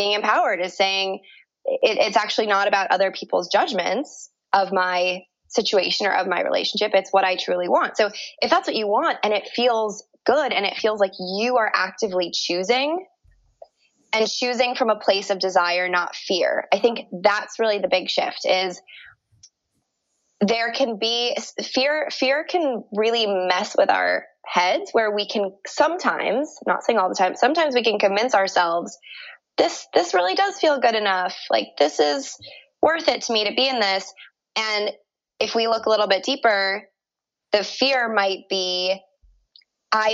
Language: English